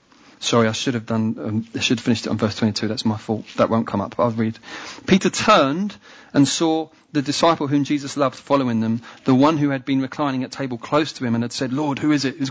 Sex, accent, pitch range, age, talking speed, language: male, British, 125-155 Hz, 40-59, 255 wpm, English